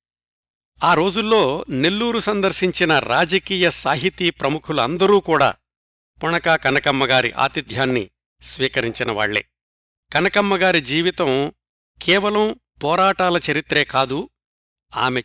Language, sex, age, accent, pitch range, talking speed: Telugu, male, 60-79, native, 130-180 Hz, 75 wpm